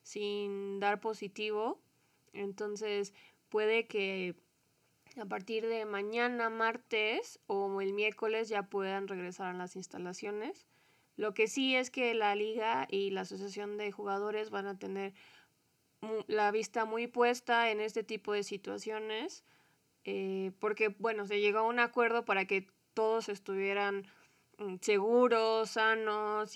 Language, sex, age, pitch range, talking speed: Spanish, female, 20-39, 195-220 Hz, 130 wpm